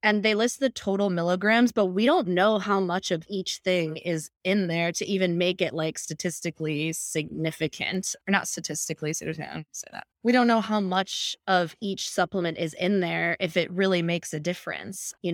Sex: female